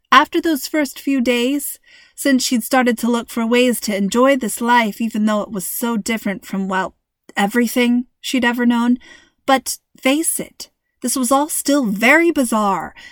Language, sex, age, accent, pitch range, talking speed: English, female, 30-49, American, 210-270 Hz, 170 wpm